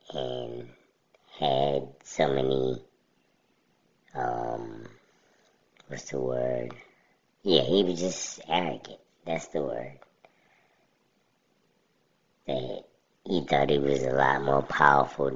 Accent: American